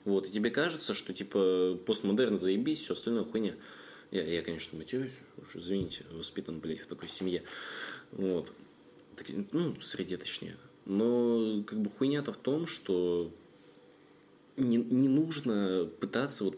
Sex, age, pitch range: male, 20-39, 95-120 Hz